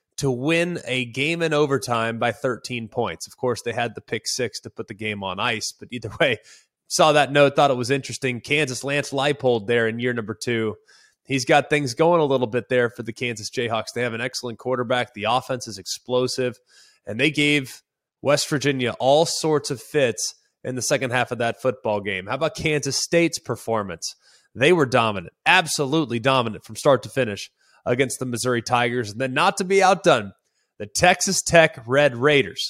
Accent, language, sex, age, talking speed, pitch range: American, English, male, 20-39, 195 wpm, 120-160 Hz